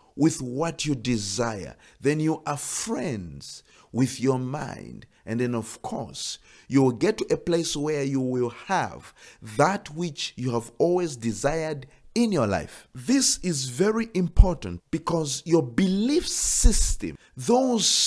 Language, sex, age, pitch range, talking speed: English, male, 50-69, 130-195 Hz, 145 wpm